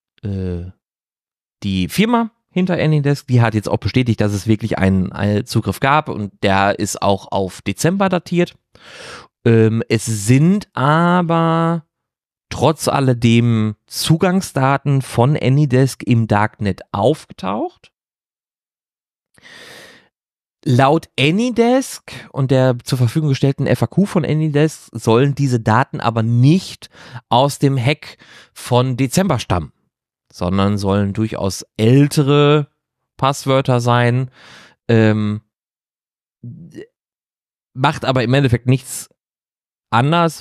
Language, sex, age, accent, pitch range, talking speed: German, male, 30-49, German, 110-145 Hz, 100 wpm